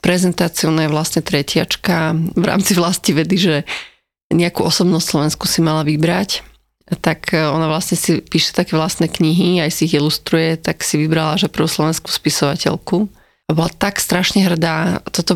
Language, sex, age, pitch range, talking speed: Slovak, female, 30-49, 165-185 Hz, 160 wpm